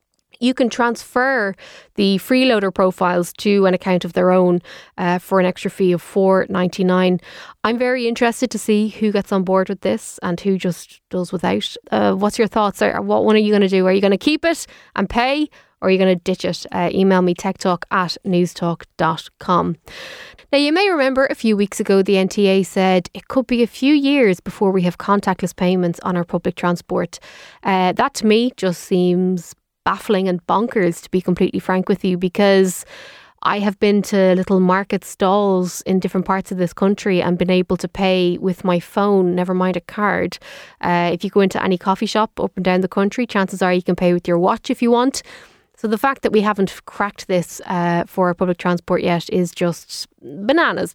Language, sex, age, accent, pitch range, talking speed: English, female, 20-39, Irish, 180-215 Hz, 205 wpm